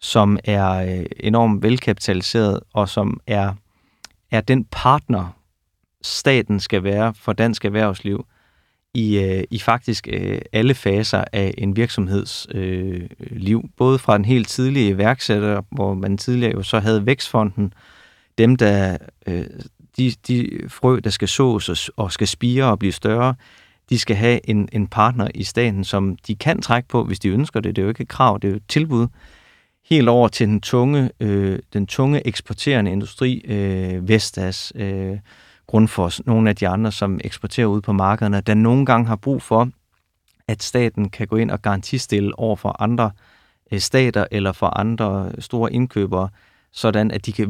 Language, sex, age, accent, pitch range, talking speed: Danish, male, 30-49, native, 100-120 Hz, 170 wpm